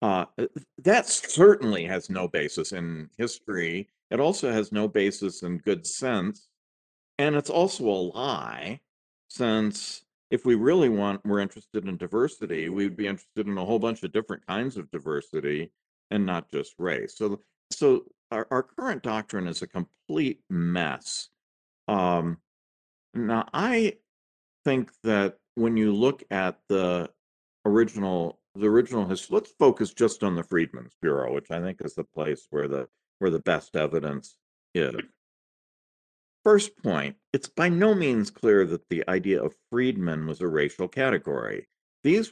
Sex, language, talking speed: male, English, 150 wpm